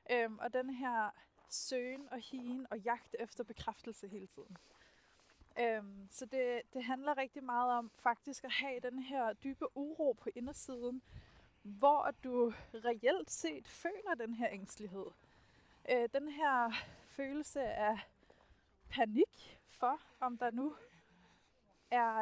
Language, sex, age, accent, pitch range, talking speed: Danish, female, 20-39, native, 215-255 Hz, 130 wpm